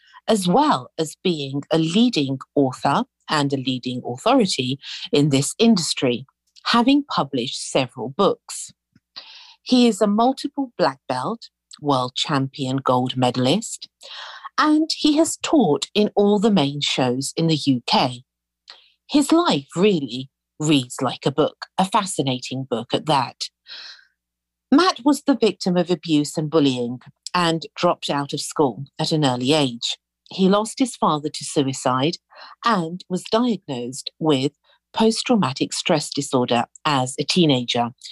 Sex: female